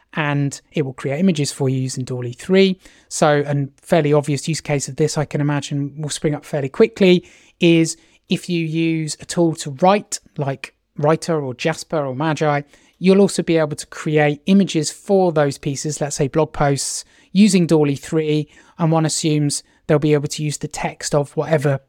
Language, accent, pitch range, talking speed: English, British, 145-165 Hz, 190 wpm